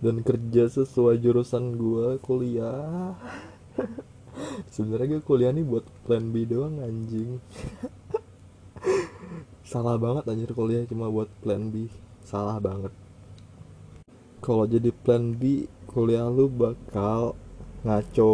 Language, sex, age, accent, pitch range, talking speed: Indonesian, male, 20-39, native, 100-120 Hz, 105 wpm